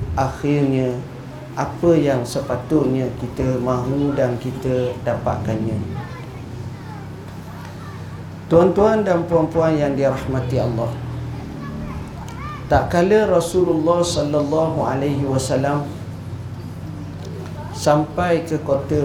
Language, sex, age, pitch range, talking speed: Malay, male, 50-69, 120-150 Hz, 70 wpm